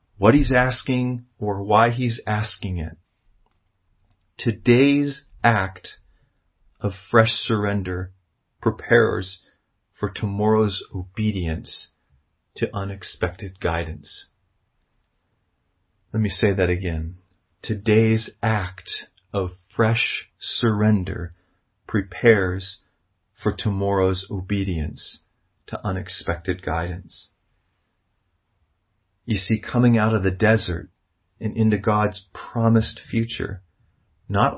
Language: English